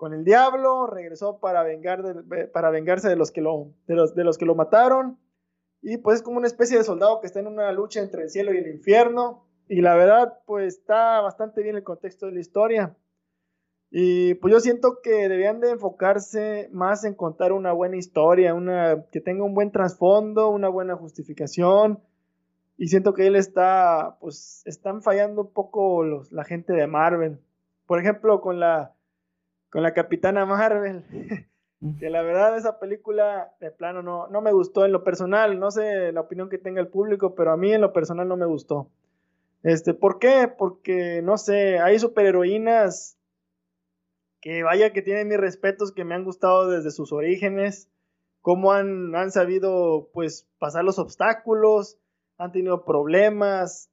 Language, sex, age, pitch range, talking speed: Spanish, male, 20-39, 165-205 Hz, 180 wpm